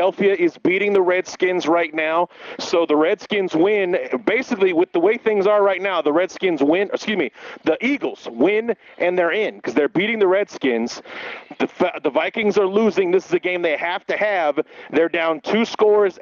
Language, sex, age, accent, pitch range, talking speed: English, male, 40-59, American, 170-220 Hz, 190 wpm